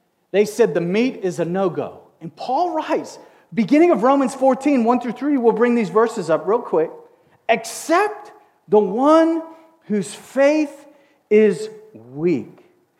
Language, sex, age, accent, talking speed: English, male, 40-59, American, 135 wpm